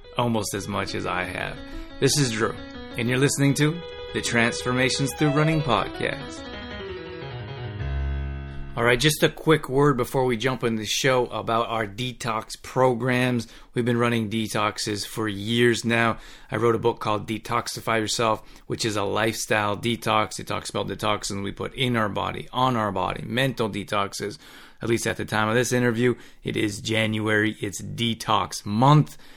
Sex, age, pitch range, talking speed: male, 30-49, 105-120 Hz, 165 wpm